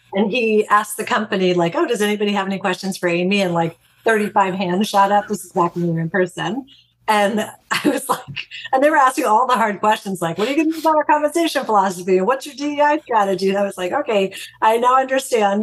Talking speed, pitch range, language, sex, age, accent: 235 wpm, 170-210 Hz, English, female, 40-59, American